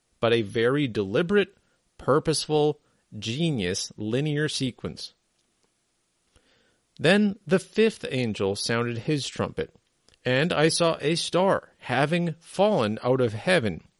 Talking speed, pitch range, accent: 105 wpm, 115-170 Hz, American